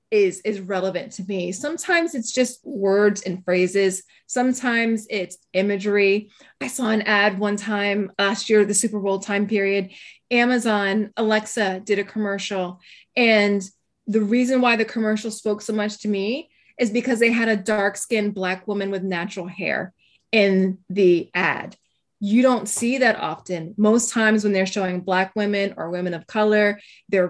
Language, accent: English, American